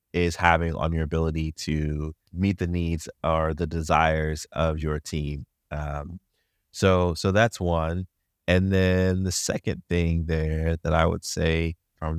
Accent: American